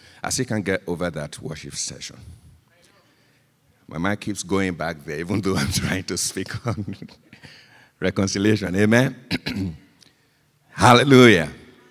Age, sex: 50-69, male